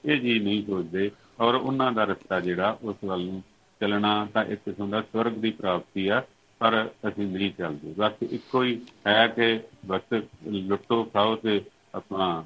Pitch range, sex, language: 100-120 Hz, male, Punjabi